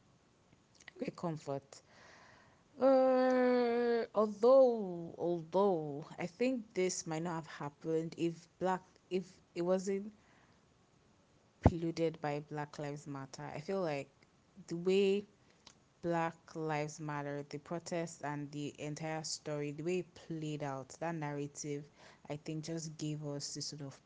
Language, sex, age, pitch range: English, female, 20-39, 150-180 Hz